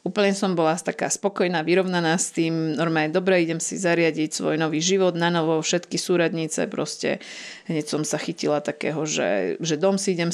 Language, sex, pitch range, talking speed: Slovak, female, 160-180 Hz, 180 wpm